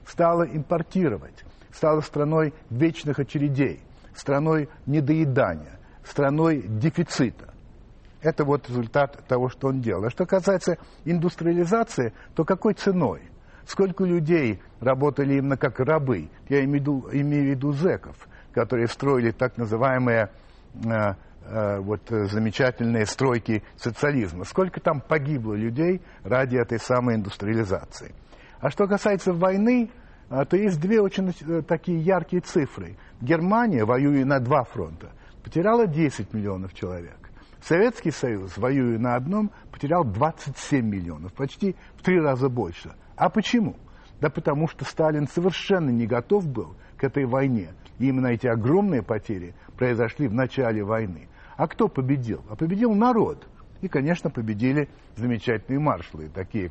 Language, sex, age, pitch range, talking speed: Russian, male, 60-79, 115-165 Hz, 125 wpm